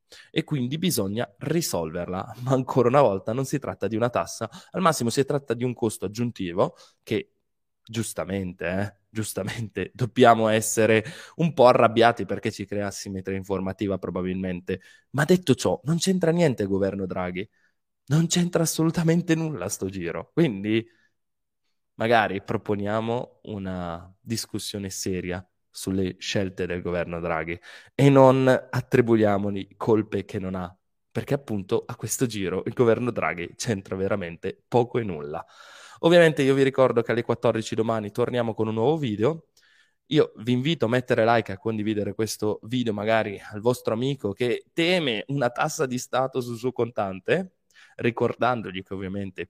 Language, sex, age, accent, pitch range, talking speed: Italian, male, 20-39, native, 95-125 Hz, 150 wpm